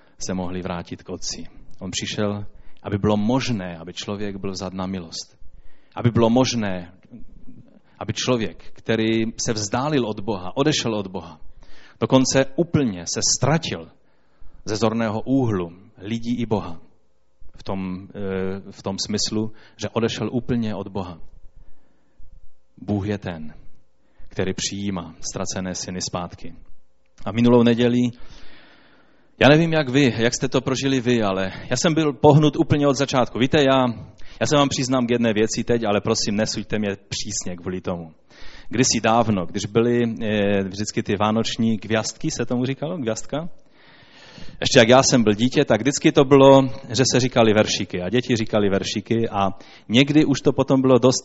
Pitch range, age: 100-130 Hz, 30-49